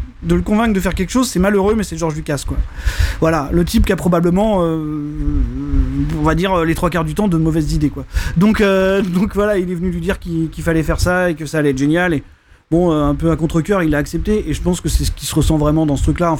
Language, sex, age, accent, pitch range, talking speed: French, male, 30-49, French, 155-205 Hz, 280 wpm